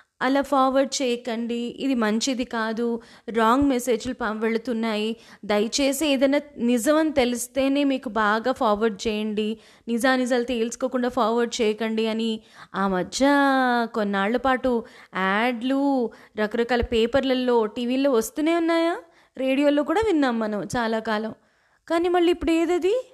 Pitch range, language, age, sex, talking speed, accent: 225-290 Hz, Telugu, 20-39, female, 110 wpm, native